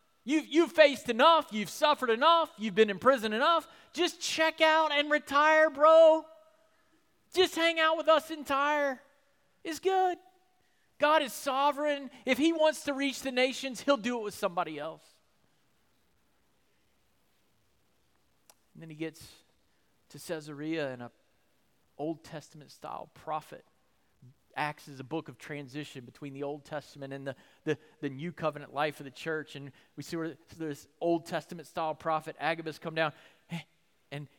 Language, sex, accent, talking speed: English, male, American, 150 wpm